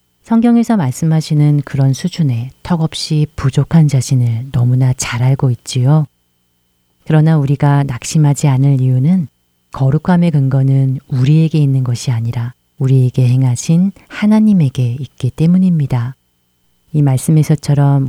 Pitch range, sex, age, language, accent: 125-155 Hz, female, 40-59, Korean, native